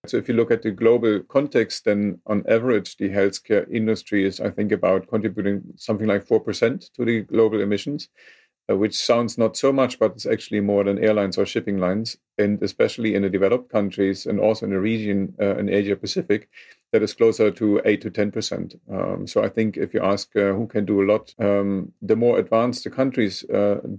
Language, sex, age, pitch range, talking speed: English, male, 50-69, 100-115 Hz, 205 wpm